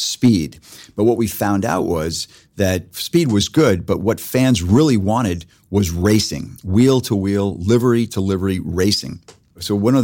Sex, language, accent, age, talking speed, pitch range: male, English, American, 40-59, 165 wpm, 90-105 Hz